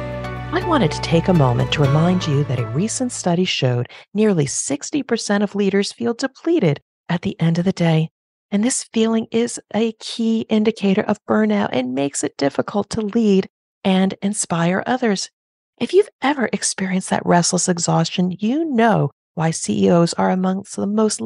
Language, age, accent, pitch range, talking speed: English, 40-59, American, 160-210 Hz, 165 wpm